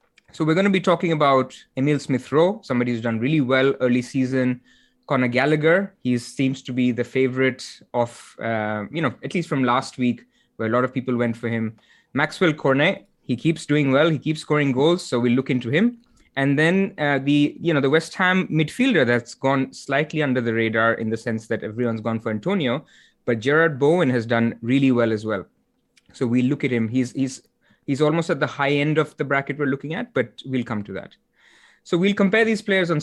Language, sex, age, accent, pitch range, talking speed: English, male, 20-39, Indian, 120-155 Hz, 220 wpm